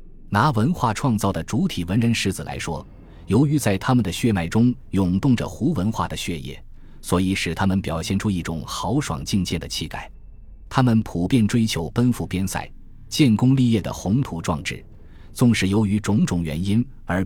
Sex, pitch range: male, 85-115 Hz